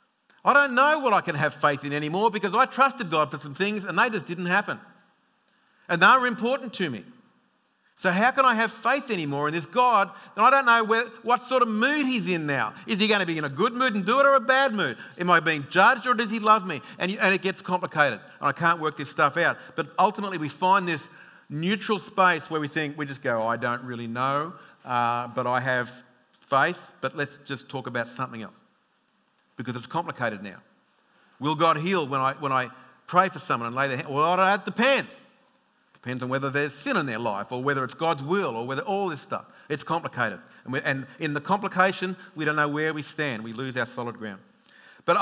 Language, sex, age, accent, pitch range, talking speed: English, male, 50-69, Australian, 135-205 Hz, 235 wpm